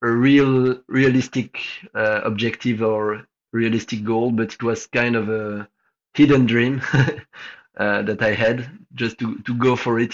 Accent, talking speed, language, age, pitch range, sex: French, 155 wpm, English, 20-39, 110-125 Hz, male